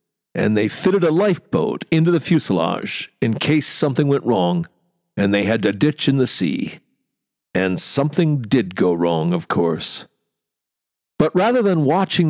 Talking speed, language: 155 wpm, English